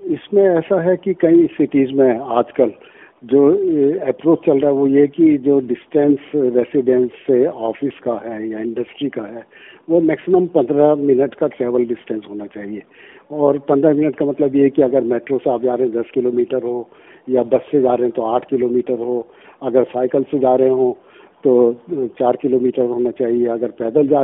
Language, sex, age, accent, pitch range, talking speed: Hindi, male, 50-69, native, 125-145 Hz, 195 wpm